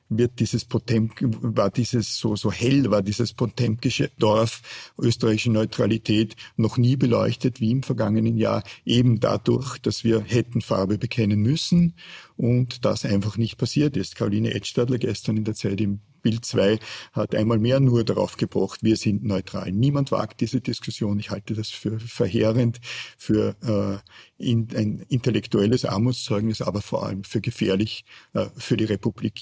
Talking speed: 155 wpm